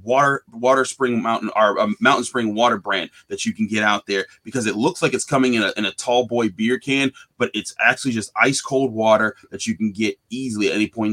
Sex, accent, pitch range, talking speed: male, American, 115-140 Hz, 245 wpm